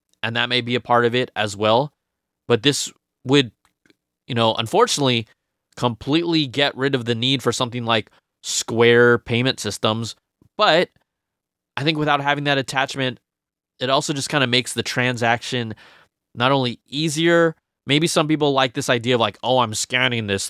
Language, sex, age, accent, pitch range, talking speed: English, male, 20-39, American, 110-135 Hz, 170 wpm